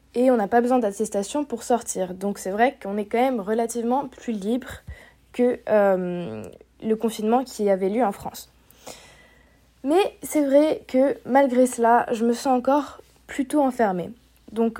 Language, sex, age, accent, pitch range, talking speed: French, female, 20-39, French, 215-270 Hz, 160 wpm